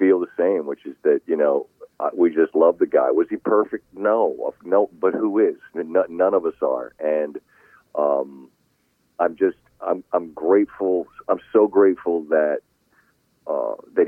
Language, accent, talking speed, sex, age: English, American, 160 wpm, male, 40-59